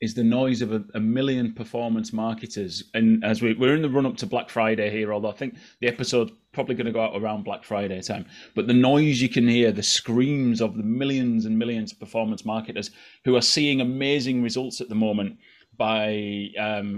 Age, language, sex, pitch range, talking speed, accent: 30-49, English, male, 105-125 Hz, 210 wpm, British